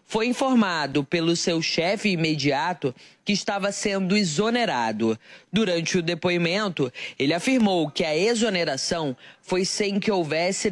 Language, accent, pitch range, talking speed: Portuguese, Brazilian, 170-220 Hz, 125 wpm